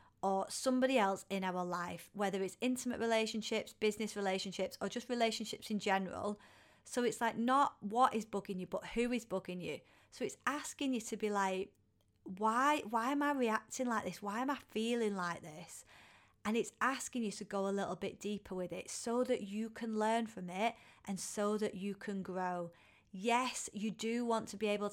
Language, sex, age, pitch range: English, female, 30-49, 190-225 Hz